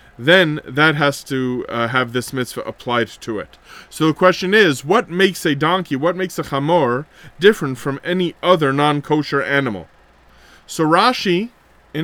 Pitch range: 135-175 Hz